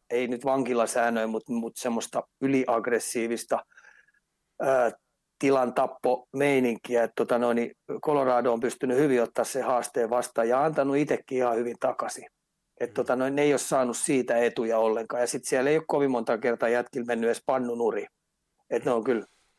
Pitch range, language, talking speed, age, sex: 115-135 Hz, Finnish, 145 wpm, 40-59, male